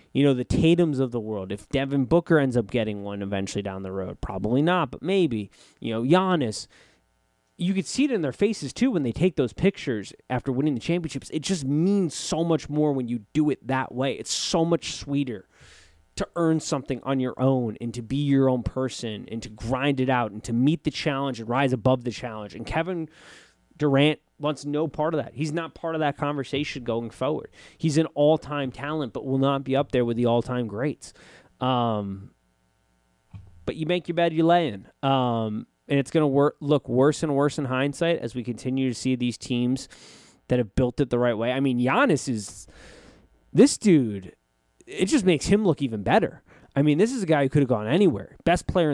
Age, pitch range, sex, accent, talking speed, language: 20-39, 115-155 Hz, male, American, 215 wpm, English